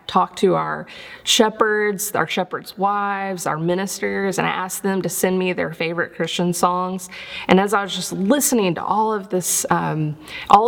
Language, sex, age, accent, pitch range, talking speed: English, female, 20-39, American, 165-200 Hz, 180 wpm